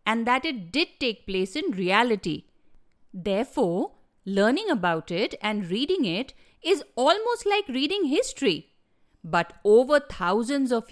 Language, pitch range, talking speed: English, 205-295 Hz, 130 wpm